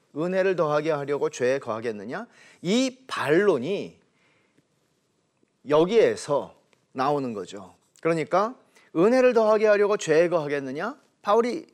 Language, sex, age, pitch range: Korean, male, 40-59, 160-230 Hz